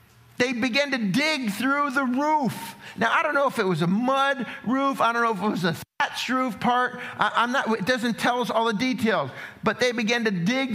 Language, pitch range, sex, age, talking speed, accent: English, 180-250 Hz, male, 50-69, 235 wpm, American